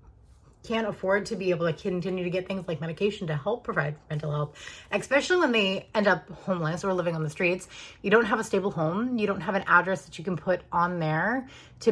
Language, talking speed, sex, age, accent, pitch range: English, 230 wpm, female, 30-49, American, 160-195 Hz